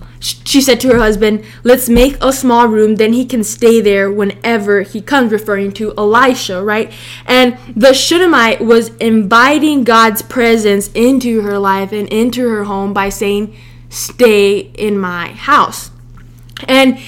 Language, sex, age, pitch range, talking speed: English, female, 10-29, 200-245 Hz, 150 wpm